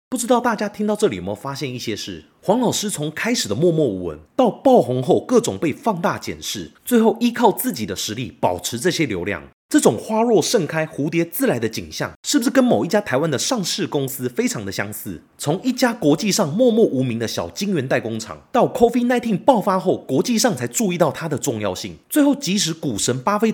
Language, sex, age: Chinese, male, 30-49